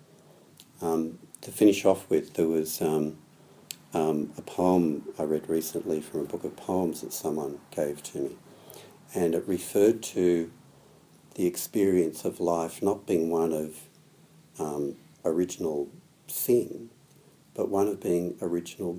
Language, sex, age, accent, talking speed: English, male, 60-79, Australian, 140 wpm